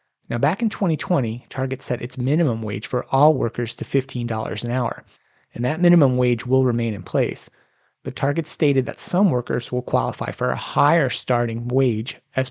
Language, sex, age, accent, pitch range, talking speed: English, male, 30-49, American, 120-145 Hz, 180 wpm